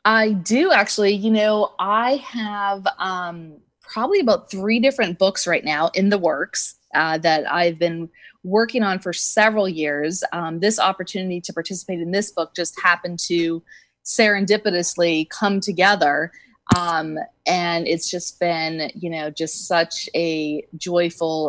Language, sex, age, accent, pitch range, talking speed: English, female, 20-39, American, 160-210 Hz, 145 wpm